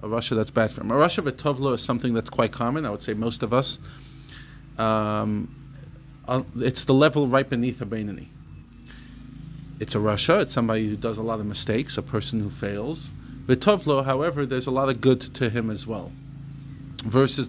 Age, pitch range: 30-49, 115-145 Hz